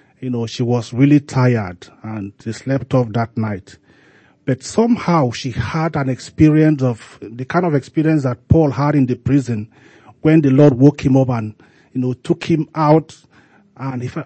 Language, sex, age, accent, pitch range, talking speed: English, male, 40-59, Nigerian, 125-155 Hz, 175 wpm